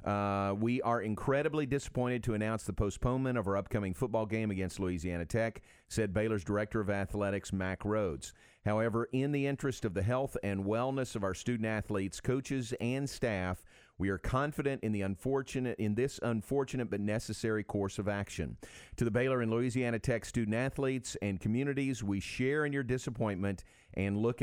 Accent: American